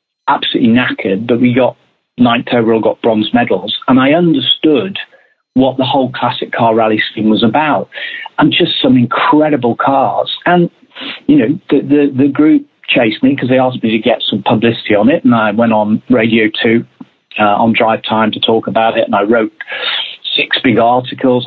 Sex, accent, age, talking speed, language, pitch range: male, British, 40-59, 180 wpm, English, 110-145 Hz